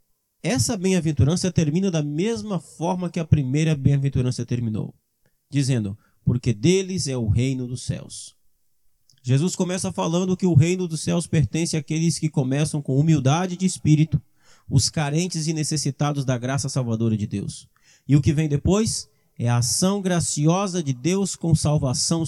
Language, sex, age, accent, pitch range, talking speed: Portuguese, male, 20-39, Brazilian, 125-170 Hz, 155 wpm